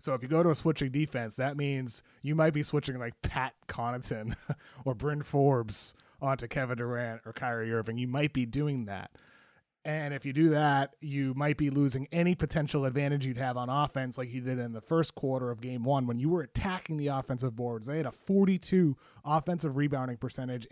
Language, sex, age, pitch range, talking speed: English, male, 30-49, 130-160 Hz, 205 wpm